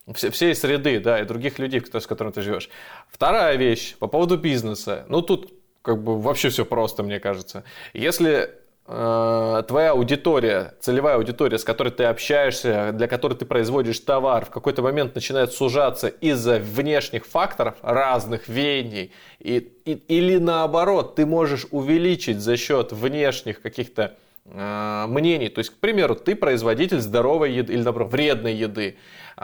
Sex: male